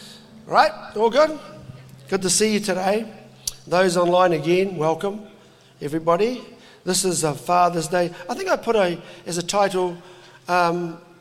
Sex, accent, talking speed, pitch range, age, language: male, Australian, 145 wpm, 160-210 Hz, 50-69, English